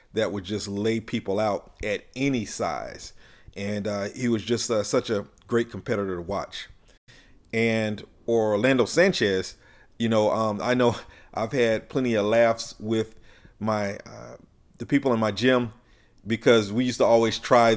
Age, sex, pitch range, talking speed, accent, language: 40-59, male, 100-120 Hz, 160 wpm, American, English